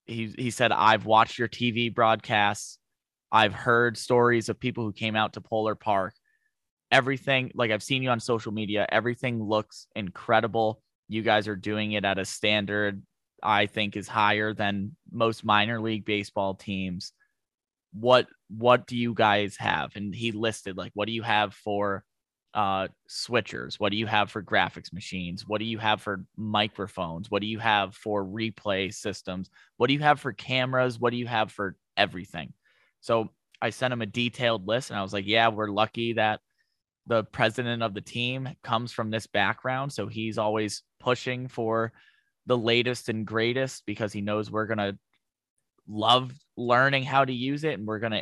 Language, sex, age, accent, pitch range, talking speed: English, male, 20-39, American, 105-120 Hz, 180 wpm